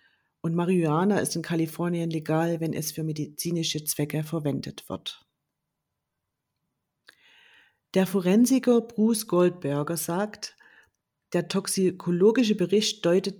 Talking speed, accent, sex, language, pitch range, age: 100 wpm, German, female, German, 160-200 Hz, 40-59